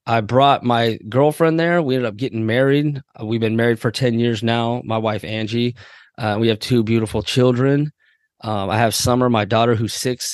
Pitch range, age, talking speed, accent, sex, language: 110-130 Hz, 20-39, 195 wpm, American, male, English